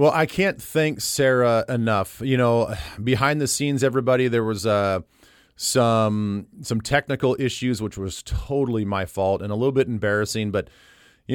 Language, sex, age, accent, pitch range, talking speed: English, male, 30-49, American, 100-125 Hz, 165 wpm